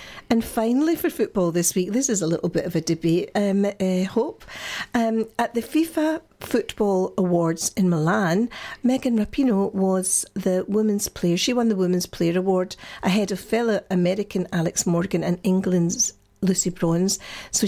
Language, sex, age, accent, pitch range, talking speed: English, female, 50-69, British, 180-220 Hz, 165 wpm